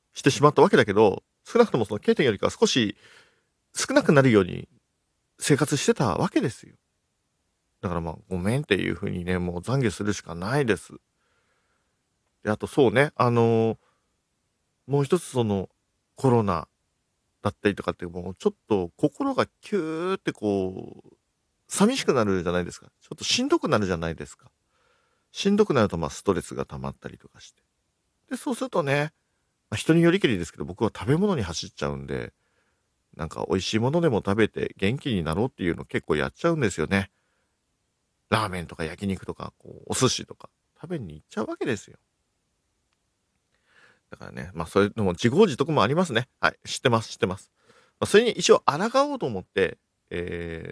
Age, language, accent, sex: 50-69, Japanese, native, male